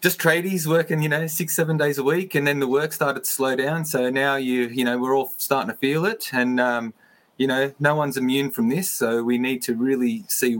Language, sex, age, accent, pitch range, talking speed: English, male, 20-39, Australian, 125-165 Hz, 250 wpm